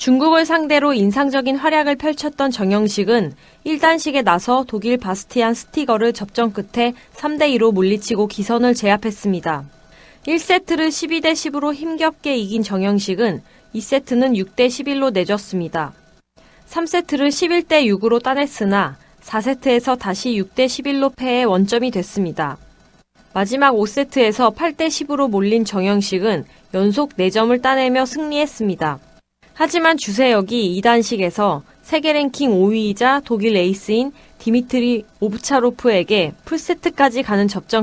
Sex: female